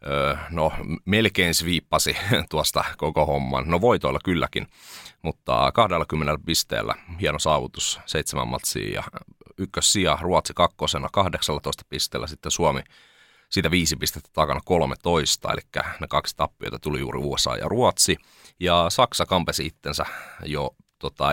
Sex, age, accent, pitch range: male, 30-49, native, 75-90 Hz